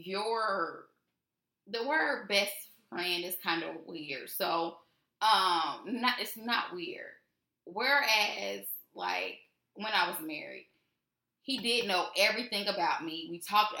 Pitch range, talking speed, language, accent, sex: 170-225 Hz, 125 wpm, English, American, female